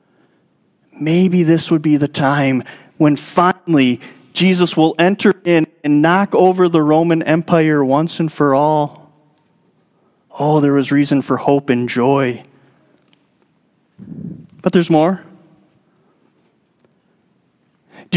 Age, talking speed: 30-49, 110 wpm